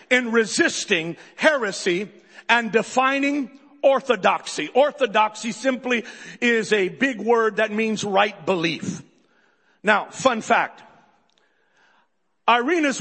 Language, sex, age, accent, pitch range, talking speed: English, male, 50-69, American, 210-265 Hz, 90 wpm